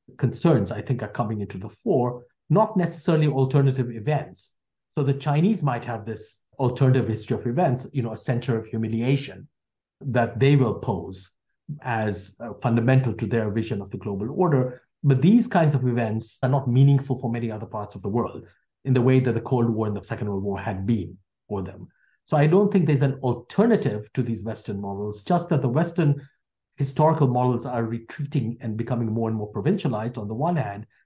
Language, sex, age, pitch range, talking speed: English, male, 50-69, 110-140 Hz, 195 wpm